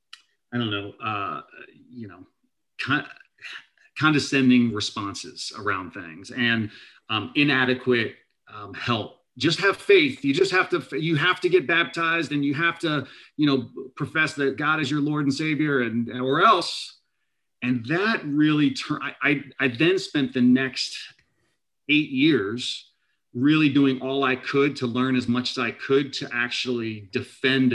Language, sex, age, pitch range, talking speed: English, male, 30-49, 115-140 Hz, 150 wpm